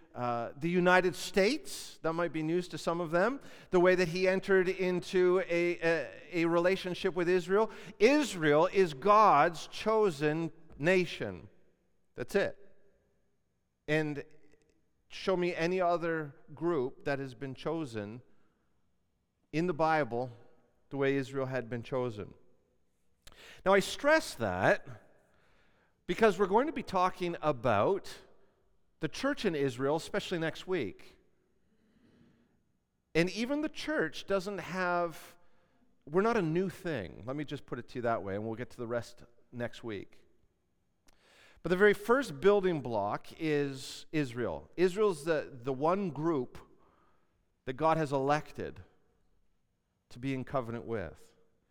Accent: American